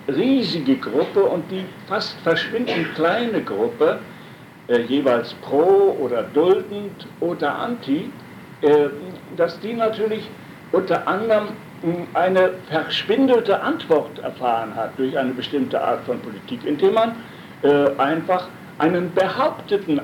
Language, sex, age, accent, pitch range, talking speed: German, male, 60-79, German, 155-210 Hz, 115 wpm